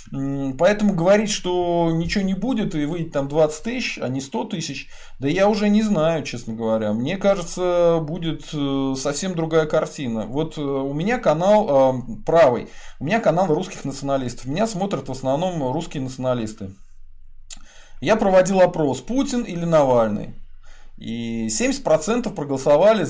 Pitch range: 135-190 Hz